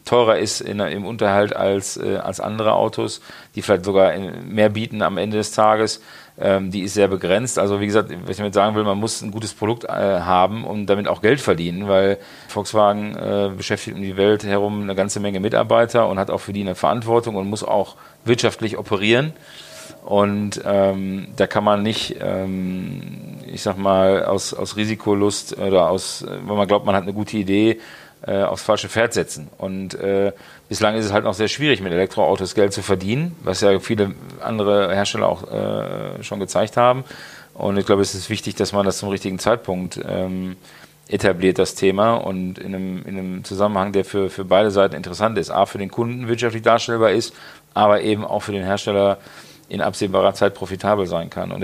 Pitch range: 95-105 Hz